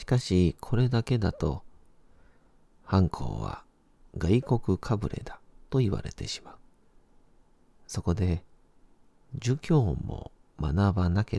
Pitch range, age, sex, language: 85-105 Hz, 40-59, male, Japanese